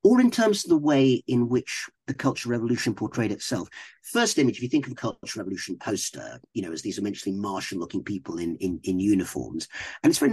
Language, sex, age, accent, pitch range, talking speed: English, male, 50-69, British, 105-165 Hz, 220 wpm